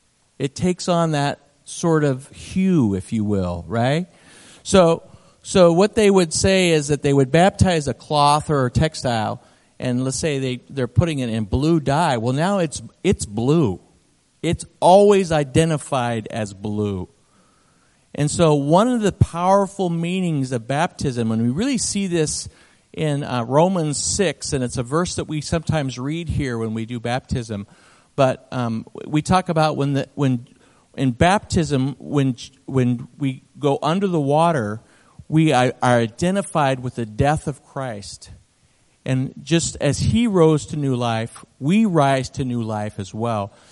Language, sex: English, male